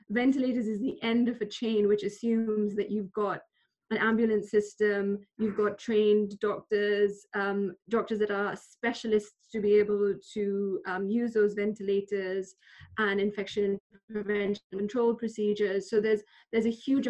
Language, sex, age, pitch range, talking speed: English, female, 20-39, 195-210 Hz, 150 wpm